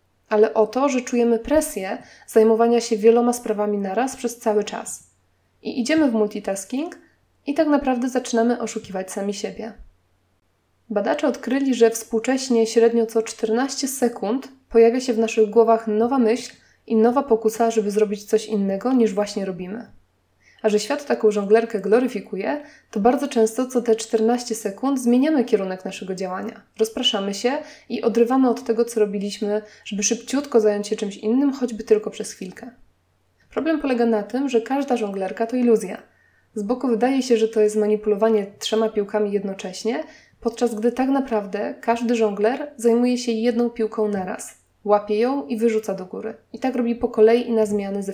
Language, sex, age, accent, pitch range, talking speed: Polish, female, 20-39, native, 210-245 Hz, 165 wpm